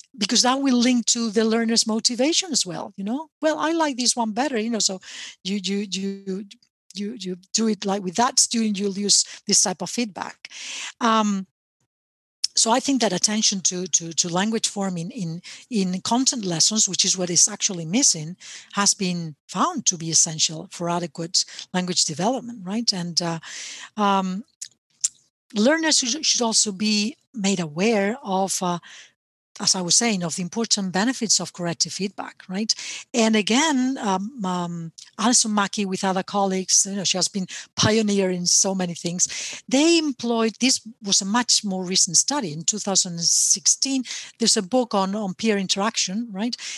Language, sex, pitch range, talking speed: English, female, 185-235 Hz, 165 wpm